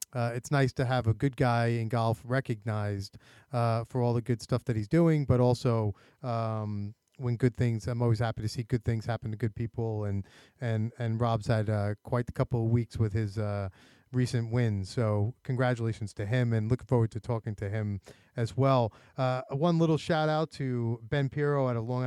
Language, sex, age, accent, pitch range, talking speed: English, male, 30-49, American, 110-130 Hz, 210 wpm